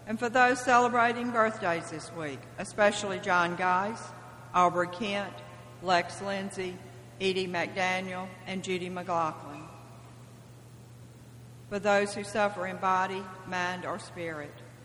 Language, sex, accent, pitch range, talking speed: English, female, American, 165-185 Hz, 115 wpm